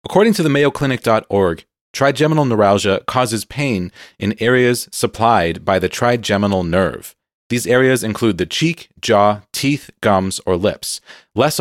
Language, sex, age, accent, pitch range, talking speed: English, male, 30-49, American, 100-135 Hz, 135 wpm